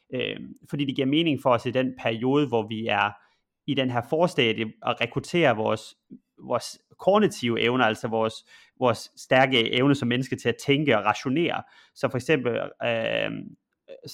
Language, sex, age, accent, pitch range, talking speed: Danish, male, 30-49, native, 115-135 Hz, 165 wpm